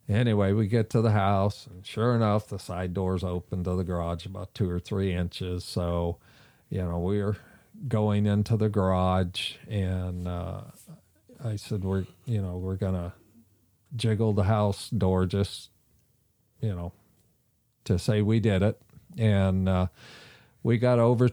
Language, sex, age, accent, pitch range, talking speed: English, male, 50-69, American, 95-120 Hz, 160 wpm